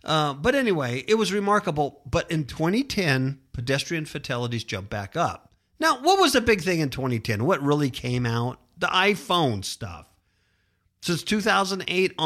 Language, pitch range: English, 100-165 Hz